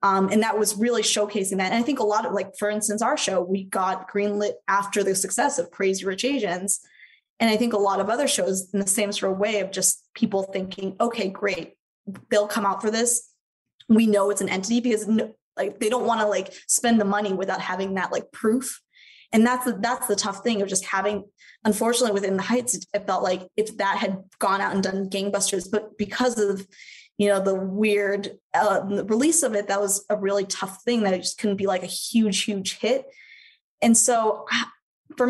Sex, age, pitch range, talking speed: female, 20-39, 195-225 Hz, 220 wpm